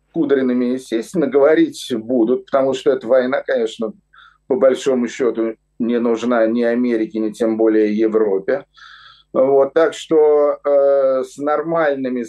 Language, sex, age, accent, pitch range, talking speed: Russian, male, 50-69, native, 125-195 Hz, 120 wpm